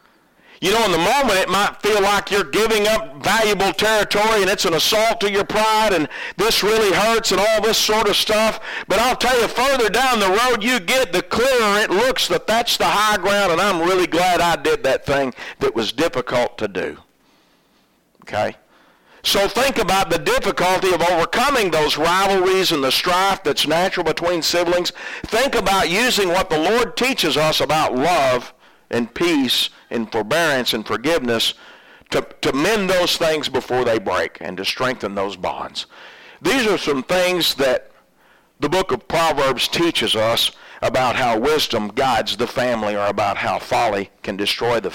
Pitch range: 165-220 Hz